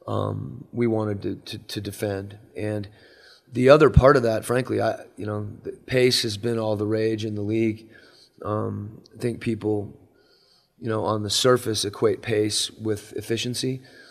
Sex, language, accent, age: male, English, American, 30-49